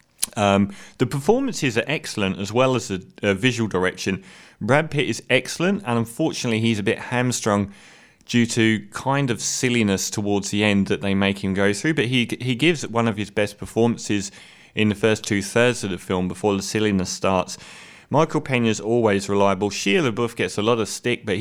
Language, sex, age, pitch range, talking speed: English, male, 30-49, 100-120 Hz, 195 wpm